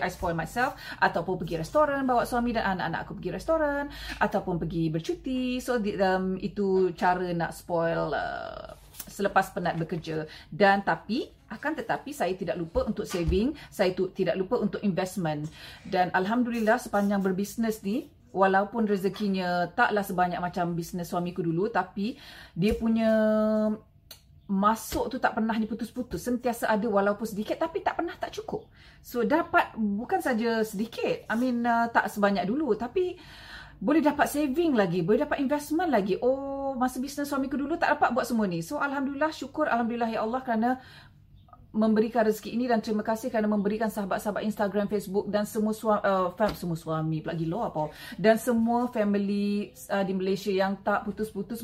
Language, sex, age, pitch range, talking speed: Malay, female, 30-49, 185-235 Hz, 160 wpm